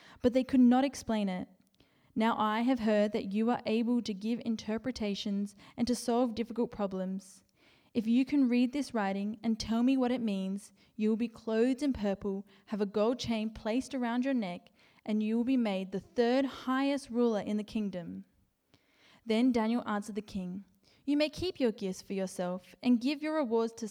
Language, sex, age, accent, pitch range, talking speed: English, female, 10-29, Australian, 210-245 Hz, 195 wpm